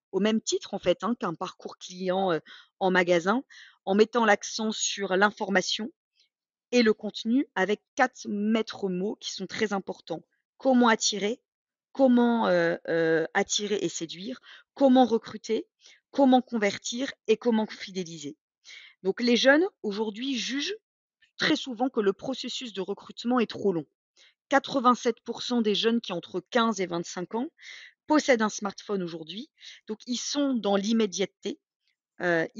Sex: female